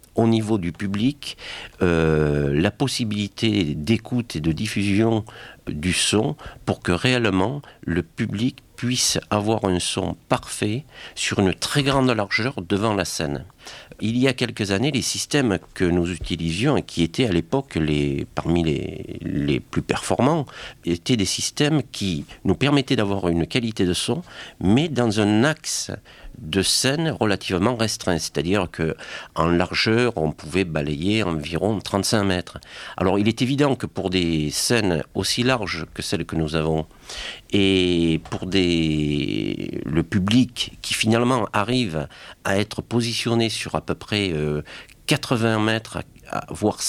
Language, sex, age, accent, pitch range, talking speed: French, male, 60-79, French, 85-120 Hz, 145 wpm